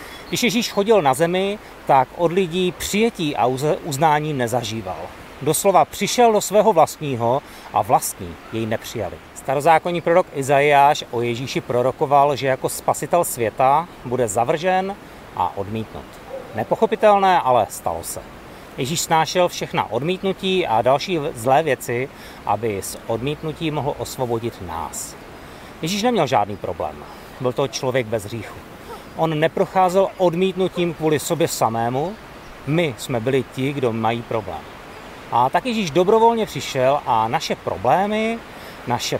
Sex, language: male, Czech